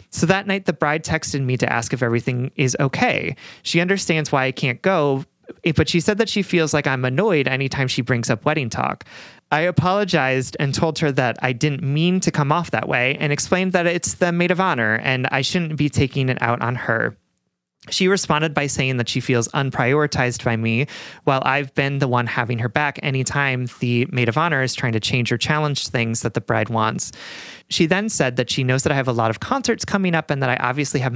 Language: English